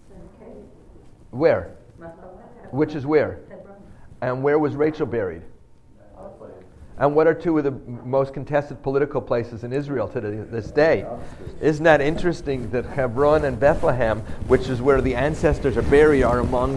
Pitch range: 110-145 Hz